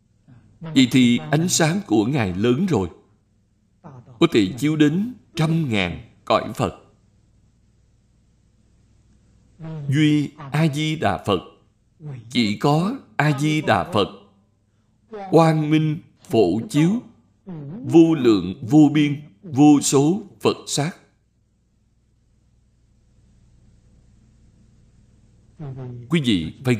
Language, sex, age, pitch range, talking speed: Vietnamese, male, 60-79, 105-155 Hz, 85 wpm